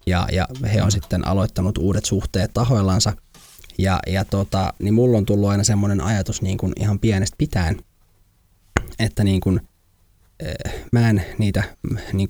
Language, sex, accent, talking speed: Finnish, male, native, 155 wpm